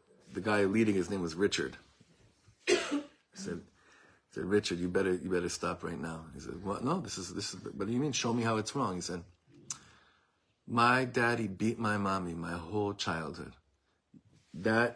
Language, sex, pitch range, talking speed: English, male, 100-120 Hz, 195 wpm